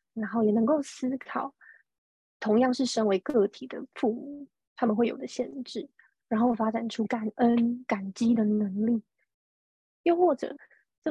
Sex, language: female, Chinese